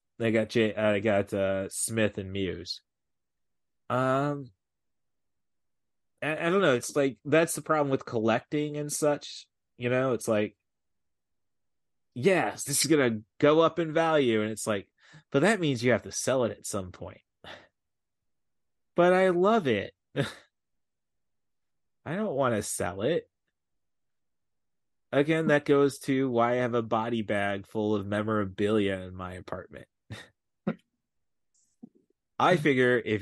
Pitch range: 100-135 Hz